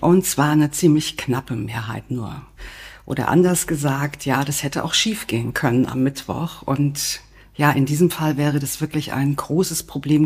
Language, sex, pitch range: German, female, 135-160 Hz